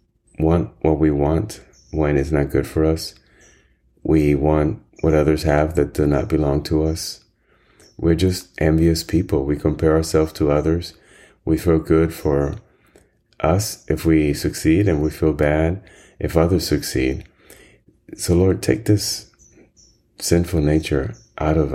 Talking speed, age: 145 wpm, 30-49